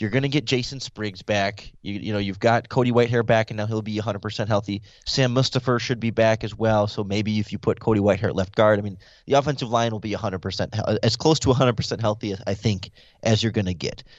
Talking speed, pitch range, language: 240 wpm, 105-125 Hz, English